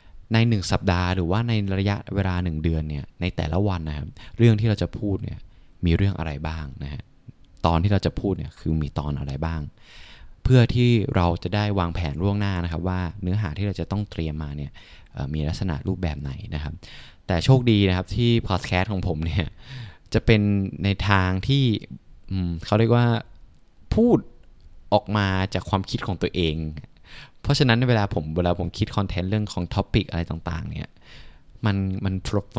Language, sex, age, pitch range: Thai, male, 20-39, 85-105 Hz